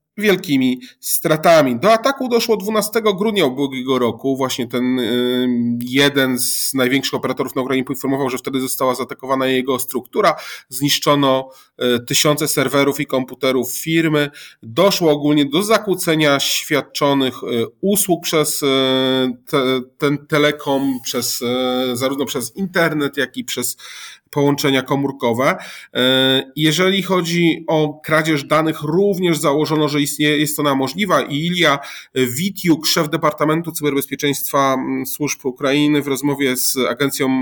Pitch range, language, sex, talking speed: 130-155 Hz, Polish, male, 115 wpm